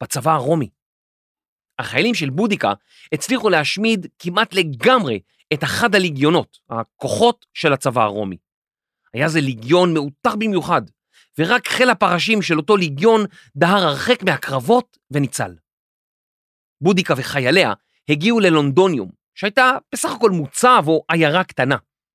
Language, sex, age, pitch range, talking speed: Hebrew, male, 40-59, 130-205 Hz, 115 wpm